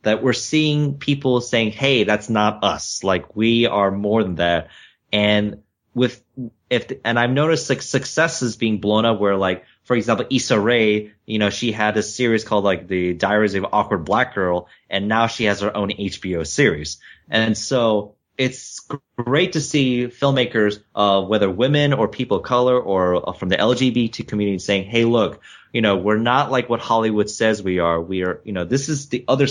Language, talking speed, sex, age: English, 195 wpm, male, 30-49